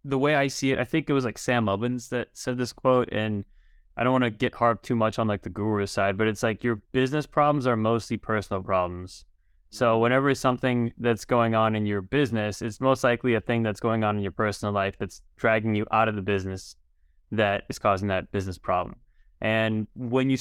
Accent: American